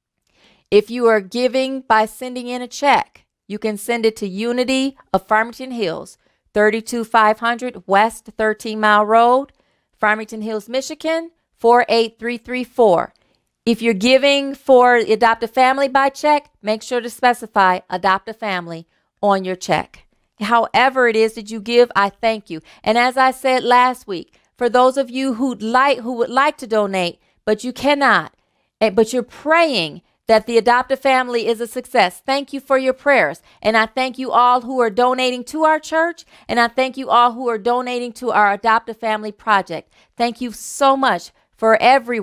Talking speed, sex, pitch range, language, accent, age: 170 wpm, female, 220-260 Hz, English, American, 40-59